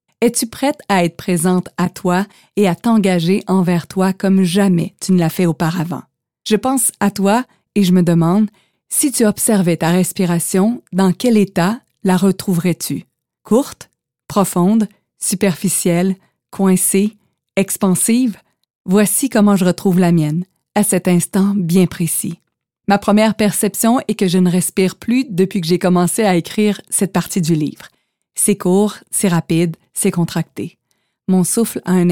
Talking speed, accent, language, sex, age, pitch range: 155 wpm, Canadian, French, female, 30-49, 175-210 Hz